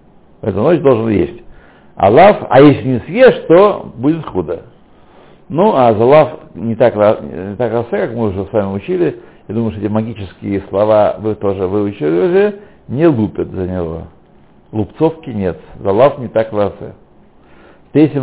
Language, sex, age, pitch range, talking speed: Russian, male, 60-79, 105-145 Hz, 160 wpm